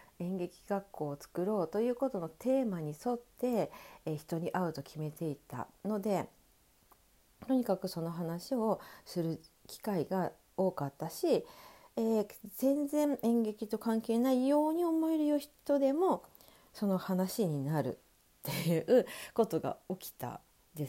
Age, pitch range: 40-59, 165-255 Hz